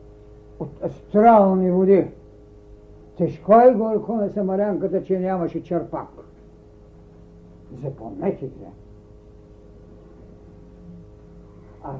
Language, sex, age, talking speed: Bulgarian, male, 60-79, 65 wpm